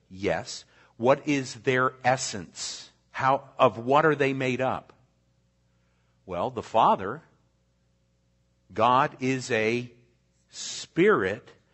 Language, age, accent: Italian, 50-69, American